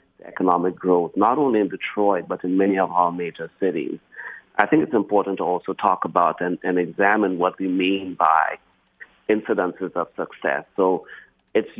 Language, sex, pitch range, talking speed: English, male, 90-100 Hz, 170 wpm